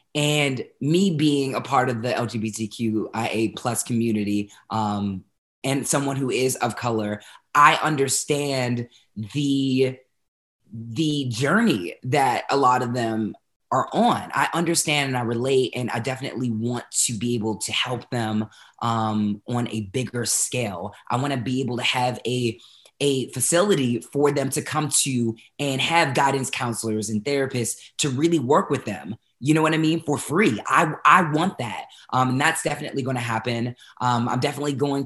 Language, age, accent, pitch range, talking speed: English, 20-39, American, 115-145 Hz, 165 wpm